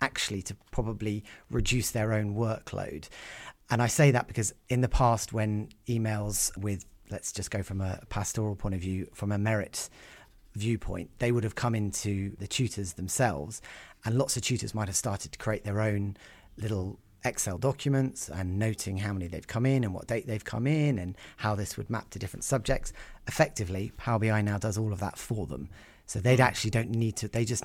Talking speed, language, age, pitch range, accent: 200 wpm, English, 30-49, 95-115 Hz, British